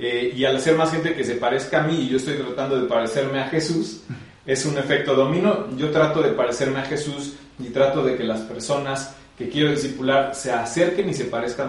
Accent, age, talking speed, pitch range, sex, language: Mexican, 30-49, 220 wpm, 130-165 Hz, male, Spanish